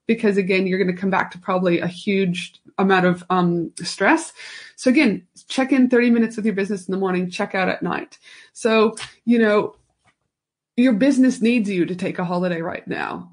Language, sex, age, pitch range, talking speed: English, female, 30-49, 190-230 Hz, 200 wpm